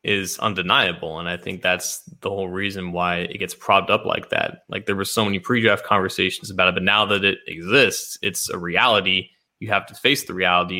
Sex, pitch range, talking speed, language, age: male, 95-115 Hz, 220 wpm, English, 20-39